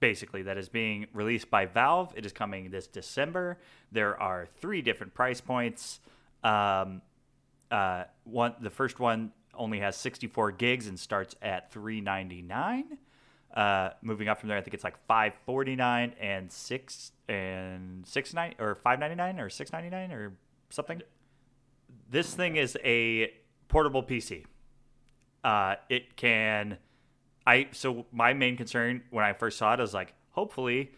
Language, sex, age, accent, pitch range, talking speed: English, male, 30-49, American, 100-130 Hz, 145 wpm